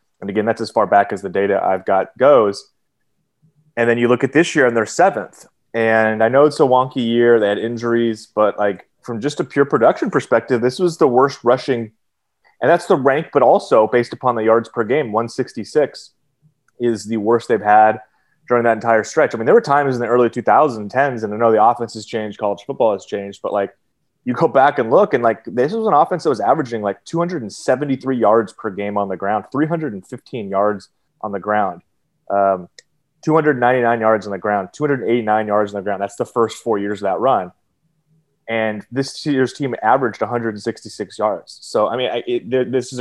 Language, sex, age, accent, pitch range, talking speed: English, male, 30-49, American, 105-135 Hz, 225 wpm